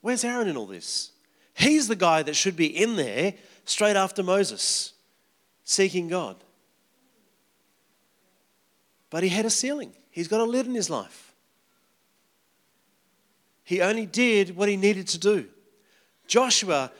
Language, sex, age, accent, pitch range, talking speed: English, male, 40-59, Australian, 210-275 Hz, 140 wpm